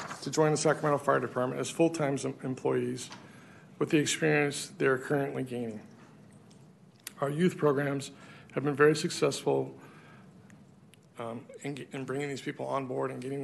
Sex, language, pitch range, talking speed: male, English, 130-150 Hz, 145 wpm